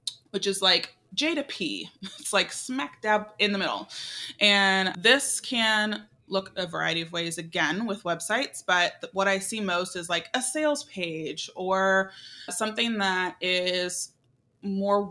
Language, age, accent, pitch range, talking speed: English, 20-39, American, 175-210 Hz, 155 wpm